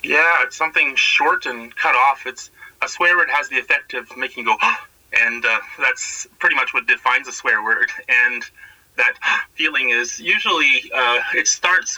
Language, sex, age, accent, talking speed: English, male, 30-49, American, 190 wpm